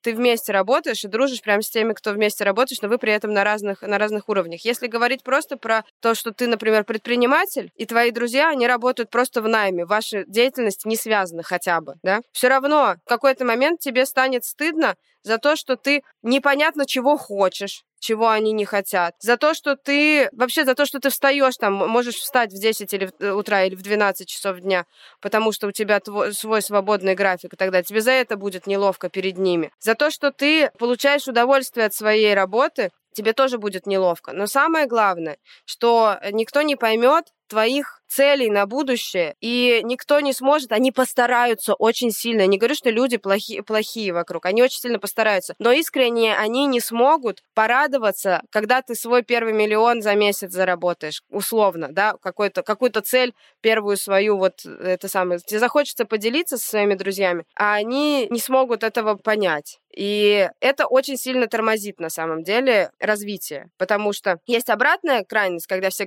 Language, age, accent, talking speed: Russian, 20-39, native, 180 wpm